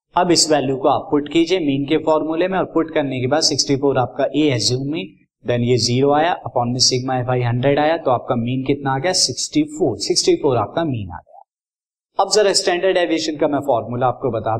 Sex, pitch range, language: male, 125-160 Hz, Hindi